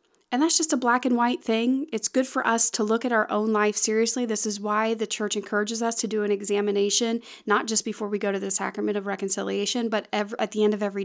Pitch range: 210-255 Hz